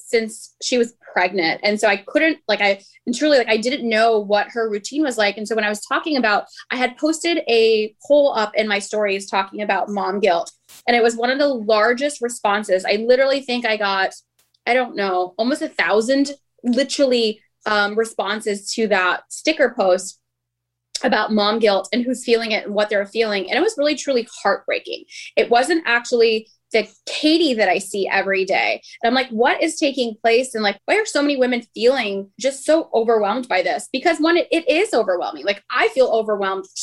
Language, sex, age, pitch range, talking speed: English, female, 10-29, 210-265 Hz, 200 wpm